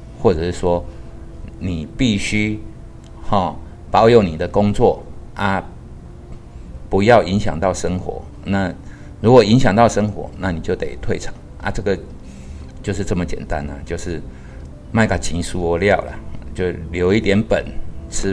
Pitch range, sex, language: 75-105 Hz, male, Chinese